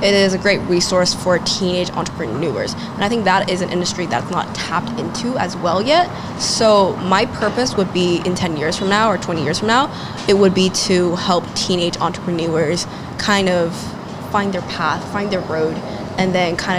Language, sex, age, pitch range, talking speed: English, female, 20-39, 175-200 Hz, 195 wpm